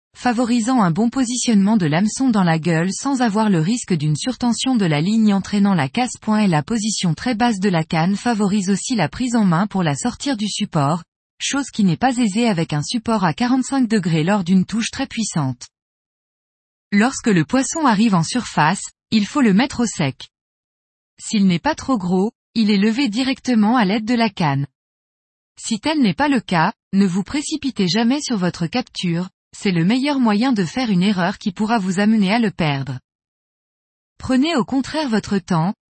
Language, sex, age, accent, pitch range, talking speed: French, female, 20-39, French, 185-245 Hz, 190 wpm